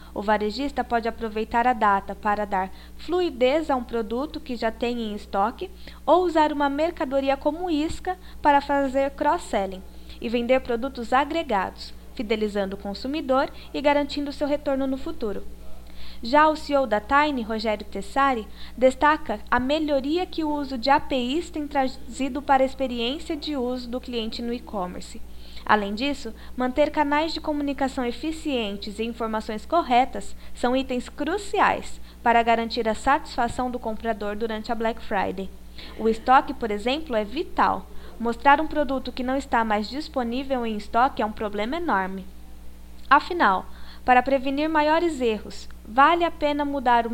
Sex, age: female, 20-39